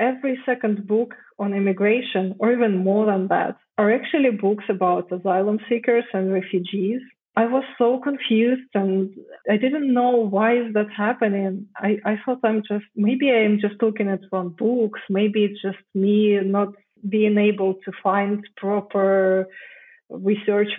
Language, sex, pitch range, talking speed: English, female, 195-230 Hz, 155 wpm